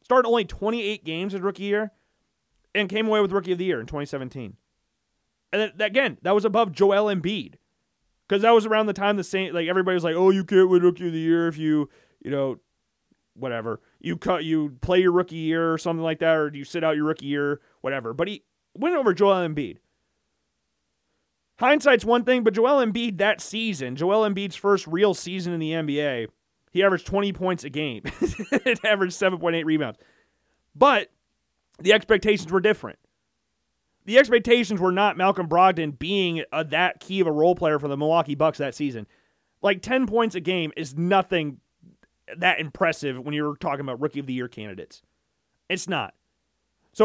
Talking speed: 185 wpm